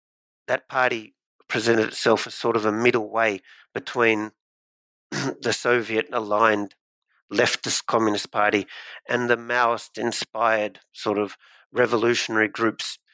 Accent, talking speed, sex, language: Australian, 105 wpm, male, English